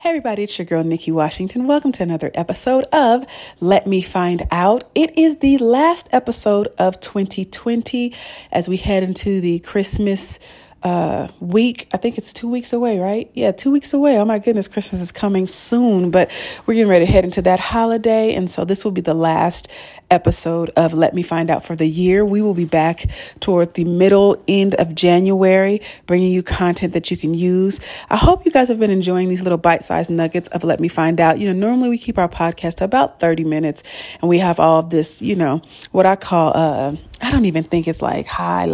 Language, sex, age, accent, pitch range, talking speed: English, female, 40-59, American, 170-210 Hz, 210 wpm